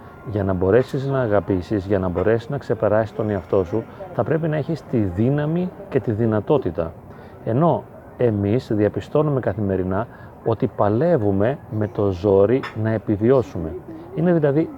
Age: 30-49